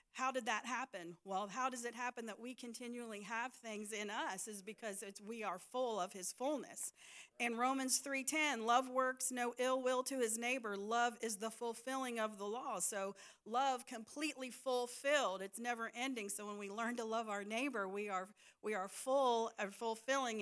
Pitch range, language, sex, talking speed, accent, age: 215-260 Hz, English, female, 195 wpm, American, 40-59